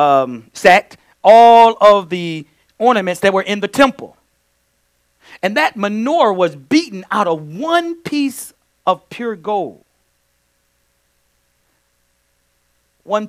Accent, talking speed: American, 110 wpm